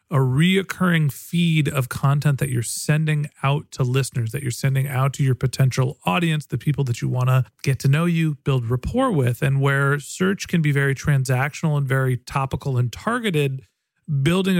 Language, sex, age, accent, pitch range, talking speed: English, male, 40-59, American, 135-170 Hz, 185 wpm